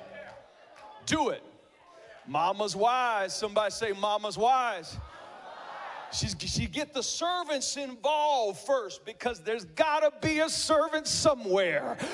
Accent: American